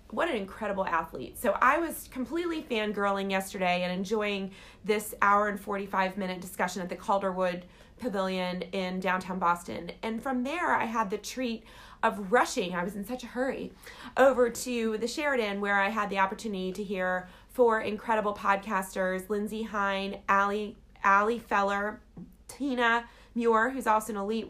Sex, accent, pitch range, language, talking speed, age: female, American, 190-235 Hz, English, 155 wpm, 30-49